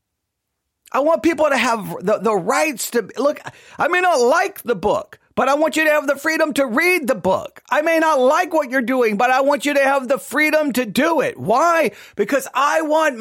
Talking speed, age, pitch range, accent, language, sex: 225 wpm, 40-59, 200-275 Hz, American, English, male